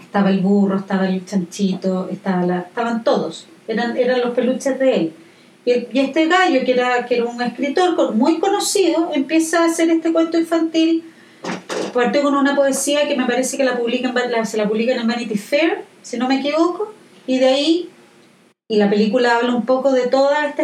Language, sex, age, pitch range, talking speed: Spanish, female, 40-59, 215-285 Hz, 200 wpm